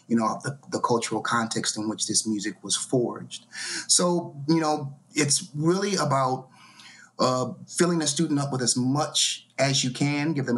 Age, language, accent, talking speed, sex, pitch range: 30-49, English, American, 175 wpm, male, 110-140 Hz